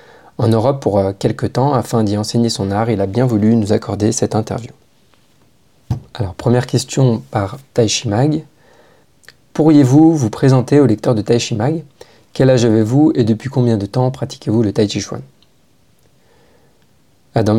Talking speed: 160 wpm